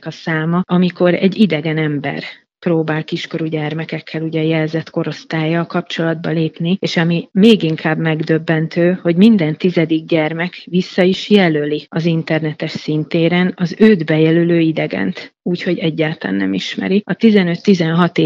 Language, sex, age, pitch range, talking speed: Hungarian, female, 30-49, 160-175 Hz, 130 wpm